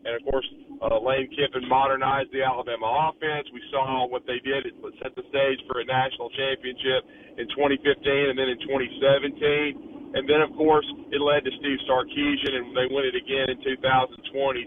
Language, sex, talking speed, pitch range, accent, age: English, male, 185 wpm, 140-175 Hz, American, 40-59